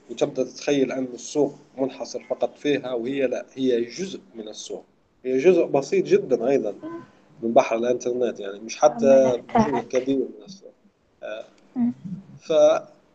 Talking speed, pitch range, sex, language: 120 wpm, 120-150 Hz, male, Arabic